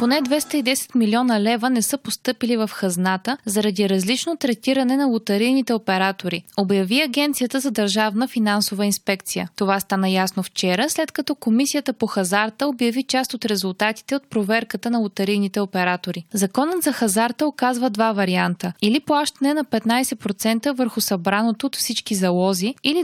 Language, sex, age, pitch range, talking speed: Bulgarian, female, 20-39, 205-260 Hz, 145 wpm